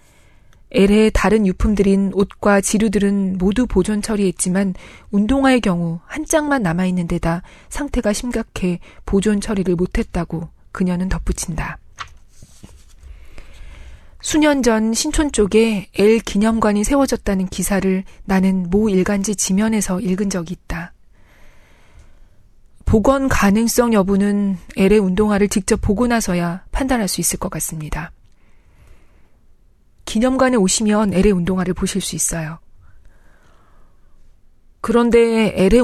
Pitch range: 185-220 Hz